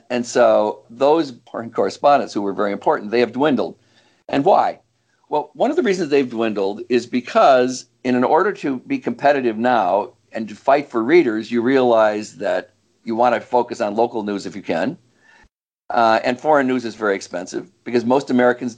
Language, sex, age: English, male, 50-69